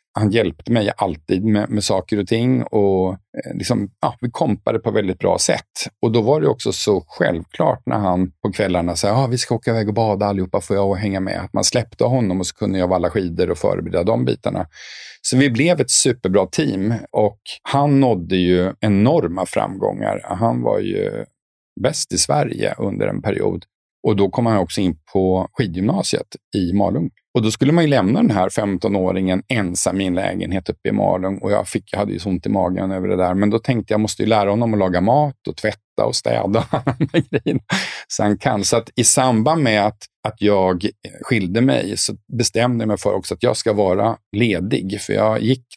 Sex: male